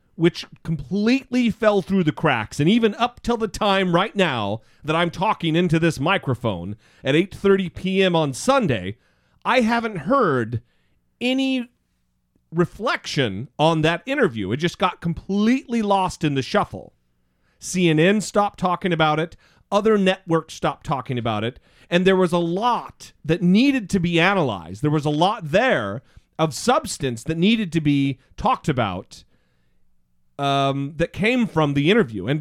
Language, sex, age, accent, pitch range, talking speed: English, male, 40-59, American, 130-195 Hz, 150 wpm